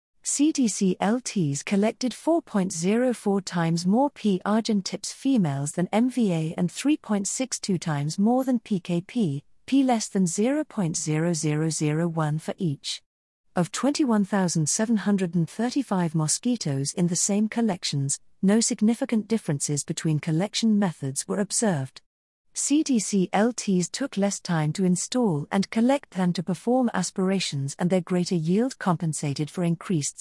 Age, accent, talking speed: 40-59, British, 110 wpm